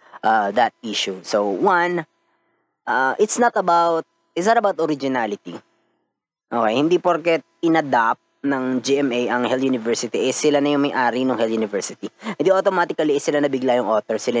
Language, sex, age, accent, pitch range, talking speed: Filipino, female, 20-39, native, 125-165 Hz, 165 wpm